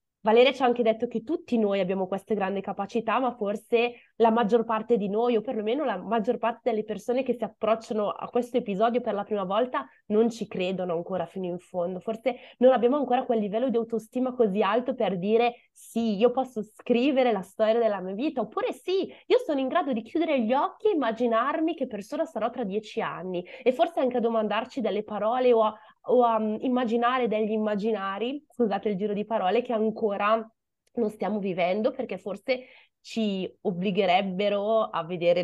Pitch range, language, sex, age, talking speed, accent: 195-245 Hz, Italian, female, 20-39, 190 wpm, native